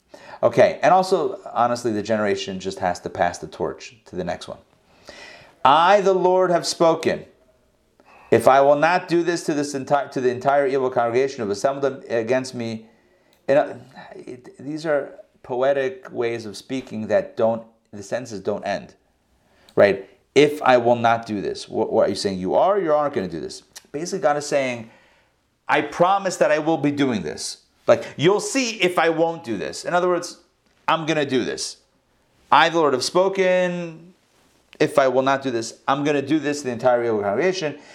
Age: 40-59